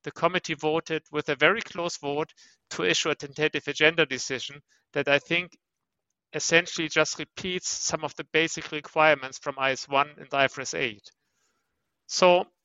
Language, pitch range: English, 145-175 Hz